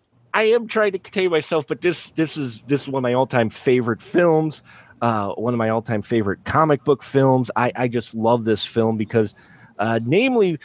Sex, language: male, English